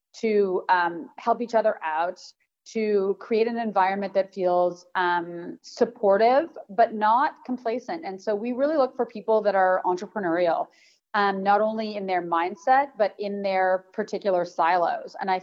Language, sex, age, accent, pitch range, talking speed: English, female, 30-49, American, 180-225 Hz, 155 wpm